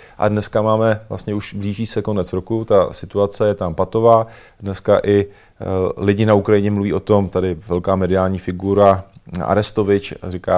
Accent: native